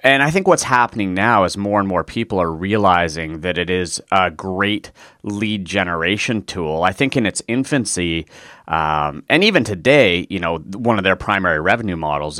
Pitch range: 90-110 Hz